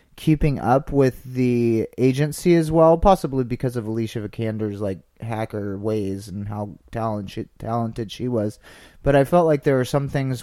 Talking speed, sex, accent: 175 wpm, male, American